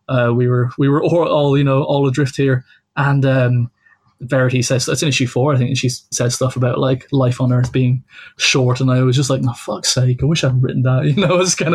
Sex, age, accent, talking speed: male, 20-39, British, 265 wpm